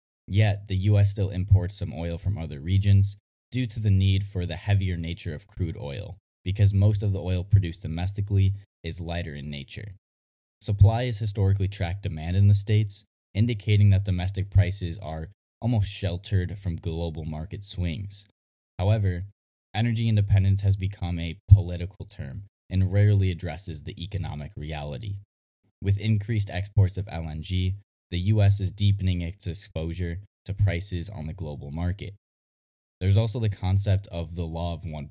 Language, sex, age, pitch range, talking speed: English, male, 20-39, 85-100 Hz, 155 wpm